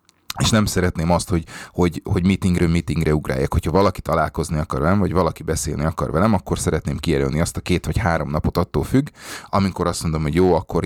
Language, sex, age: Hungarian, male, 30-49